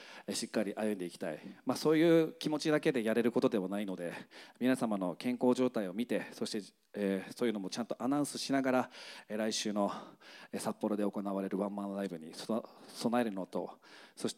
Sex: male